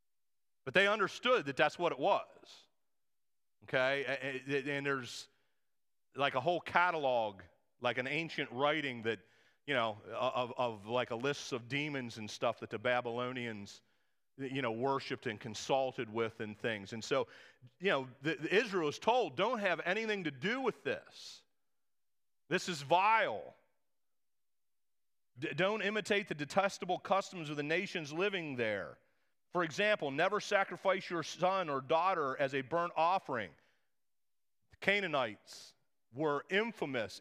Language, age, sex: English, 40-59, male